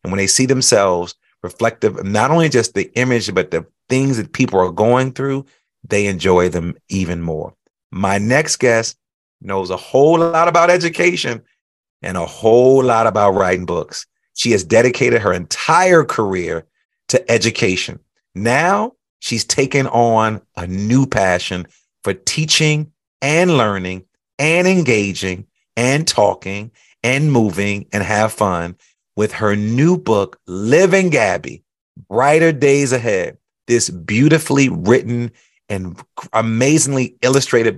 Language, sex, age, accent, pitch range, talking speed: English, male, 40-59, American, 100-135 Hz, 130 wpm